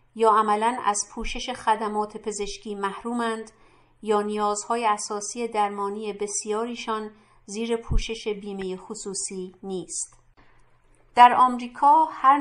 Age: 50-69